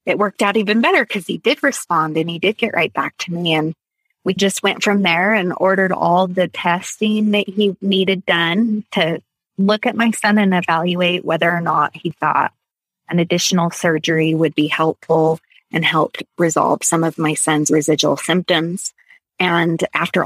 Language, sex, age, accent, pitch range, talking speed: English, female, 30-49, American, 160-190 Hz, 180 wpm